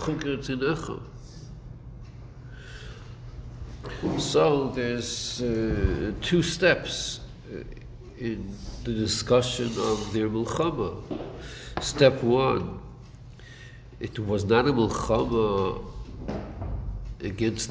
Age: 60-79